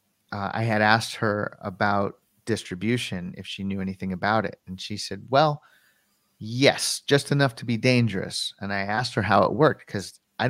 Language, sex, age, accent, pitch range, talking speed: English, male, 30-49, American, 105-125 Hz, 185 wpm